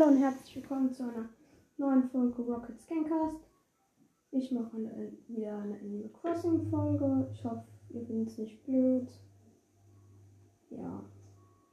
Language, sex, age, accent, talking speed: German, female, 10-29, German, 130 wpm